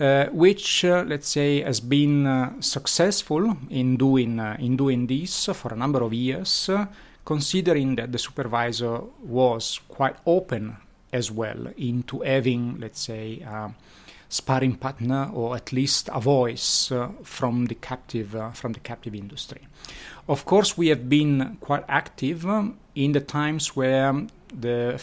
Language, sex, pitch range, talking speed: English, male, 120-145 Hz, 145 wpm